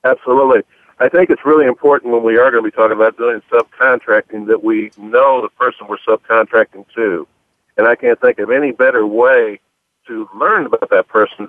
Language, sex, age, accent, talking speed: English, male, 60-79, American, 195 wpm